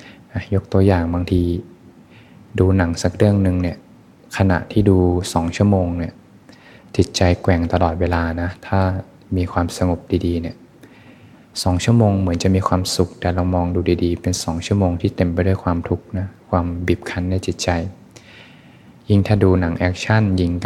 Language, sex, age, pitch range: Thai, male, 20-39, 85-100 Hz